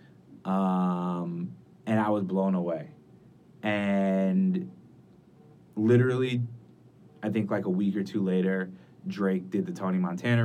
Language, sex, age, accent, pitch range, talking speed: English, male, 20-39, American, 95-120 Hz, 120 wpm